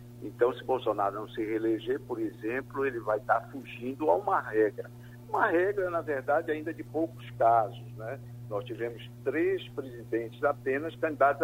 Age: 60-79